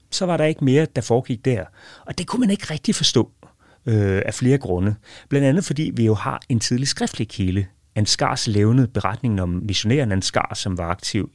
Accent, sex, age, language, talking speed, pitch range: native, male, 30-49, Danish, 200 wpm, 95-130 Hz